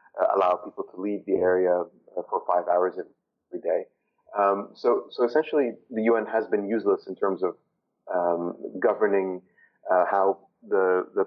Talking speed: 165 wpm